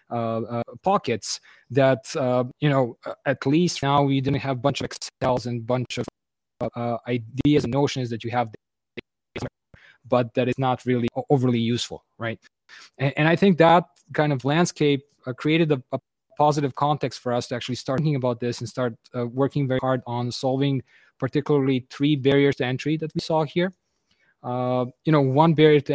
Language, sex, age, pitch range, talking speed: English, male, 20-39, 120-145 Hz, 190 wpm